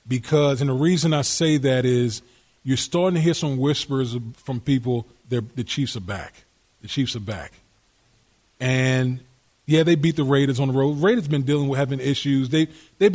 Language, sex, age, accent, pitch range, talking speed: English, male, 30-49, American, 135-185 Hz, 190 wpm